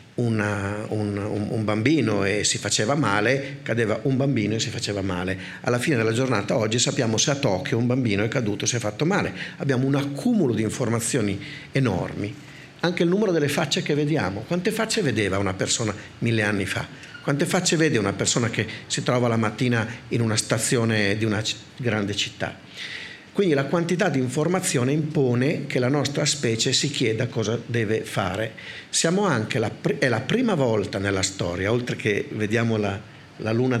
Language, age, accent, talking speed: Italian, 50-69, native, 175 wpm